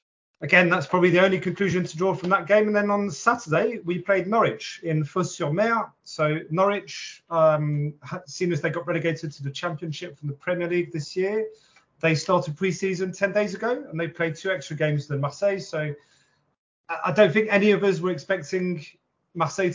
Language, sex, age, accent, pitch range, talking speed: English, male, 30-49, British, 150-185 Hz, 185 wpm